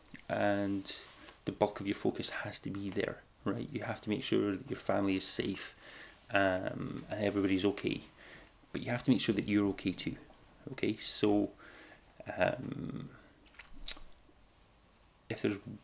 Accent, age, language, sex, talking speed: British, 30-49, English, male, 150 wpm